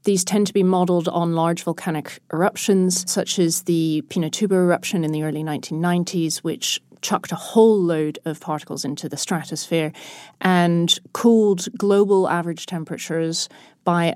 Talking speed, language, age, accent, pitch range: 145 wpm, English, 40-59, British, 160-195 Hz